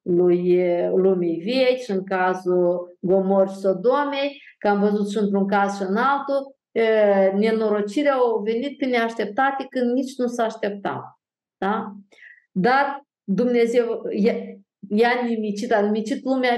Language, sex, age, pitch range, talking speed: Romanian, female, 50-69, 185-245 Hz, 130 wpm